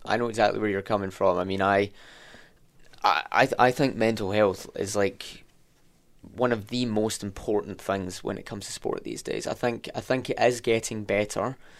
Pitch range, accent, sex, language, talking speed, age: 95-110 Hz, British, male, English, 205 wpm, 10-29